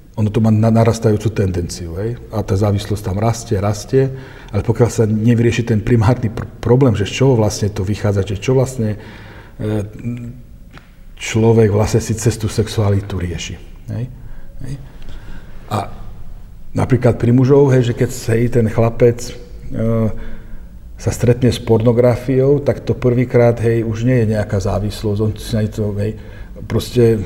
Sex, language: male, Slovak